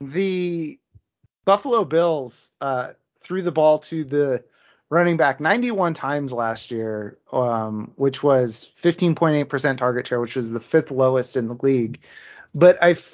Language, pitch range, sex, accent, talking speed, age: English, 125-165 Hz, male, American, 140 wpm, 30-49